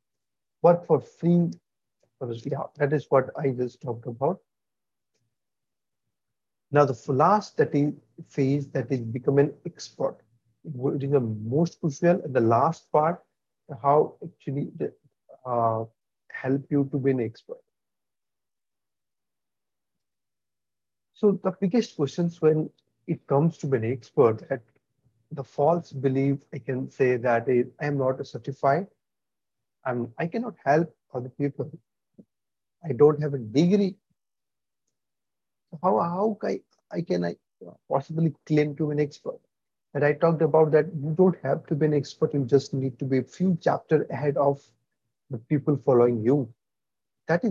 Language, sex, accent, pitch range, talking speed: English, male, Indian, 125-160 Hz, 145 wpm